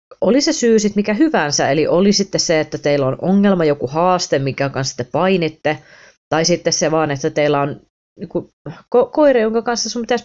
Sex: female